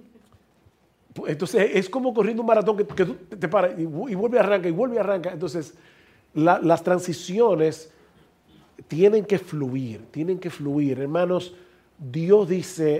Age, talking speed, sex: 40-59, 140 wpm, male